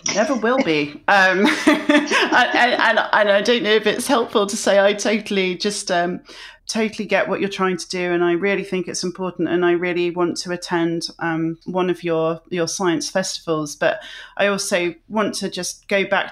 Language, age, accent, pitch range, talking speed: English, 30-49, British, 170-200 Hz, 195 wpm